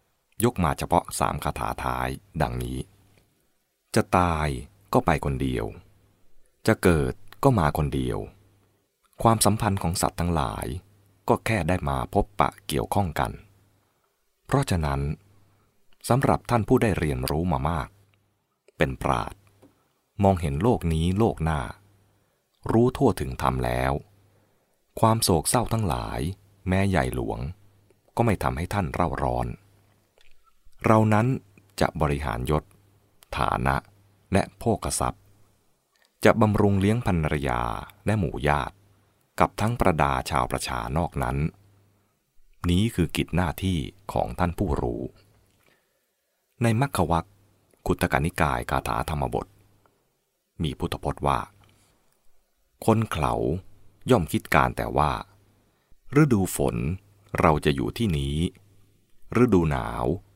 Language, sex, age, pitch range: English, male, 20-39, 75-105 Hz